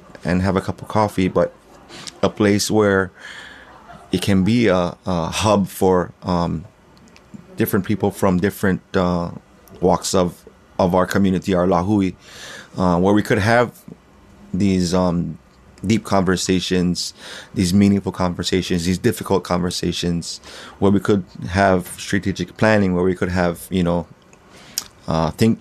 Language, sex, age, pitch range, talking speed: English, male, 30-49, 90-100 Hz, 135 wpm